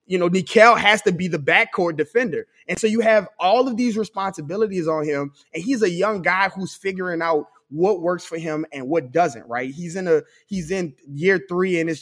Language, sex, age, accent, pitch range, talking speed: English, male, 20-39, American, 155-205 Hz, 220 wpm